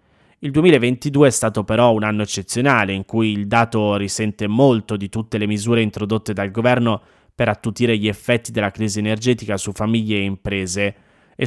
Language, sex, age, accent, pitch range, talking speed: Italian, male, 20-39, native, 100-120 Hz, 175 wpm